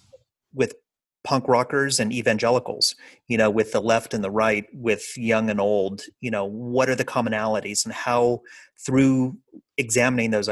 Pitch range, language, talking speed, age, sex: 100-125 Hz, English, 160 wpm, 30-49, male